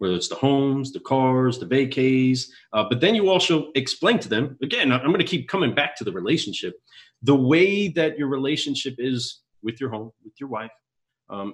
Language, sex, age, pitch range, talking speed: English, male, 30-49, 115-160 Hz, 205 wpm